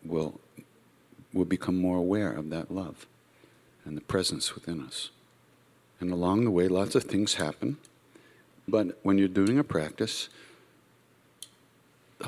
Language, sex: English, male